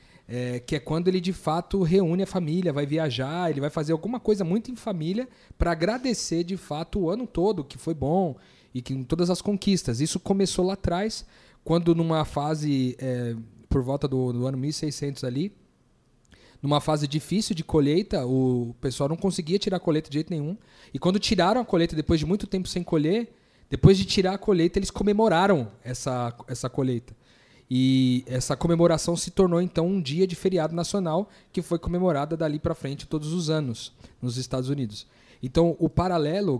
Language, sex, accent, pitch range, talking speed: Portuguese, male, Brazilian, 130-180 Hz, 185 wpm